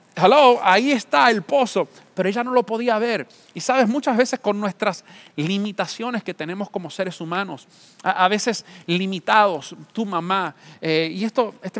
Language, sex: English, male